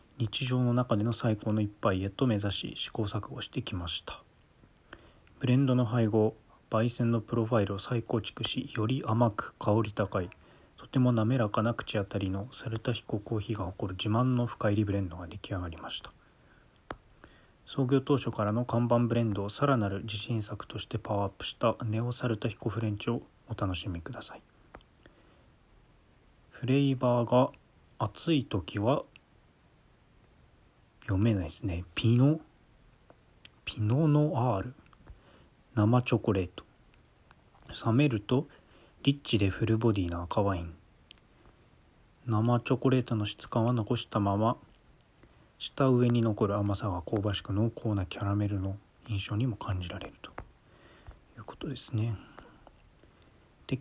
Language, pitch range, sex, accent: Japanese, 100-120 Hz, male, native